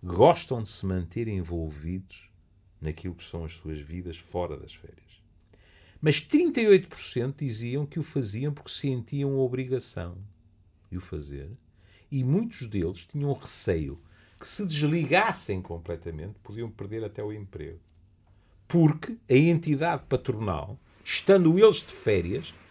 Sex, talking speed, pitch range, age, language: male, 130 wpm, 90-135 Hz, 50-69, Portuguese